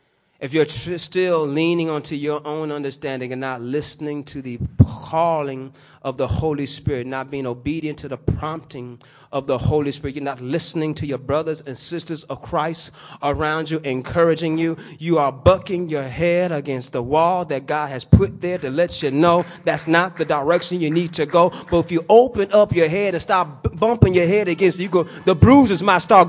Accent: American